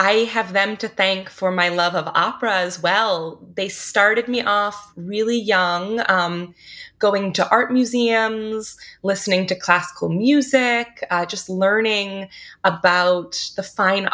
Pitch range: 180-230 Hz